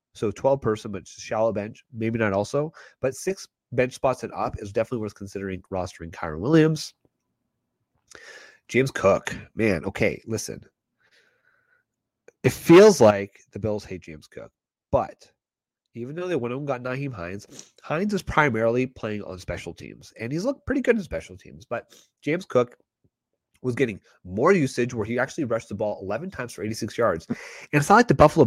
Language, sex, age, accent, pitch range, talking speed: English, male, 30-49, American, 100-135 Hz, 175 wpm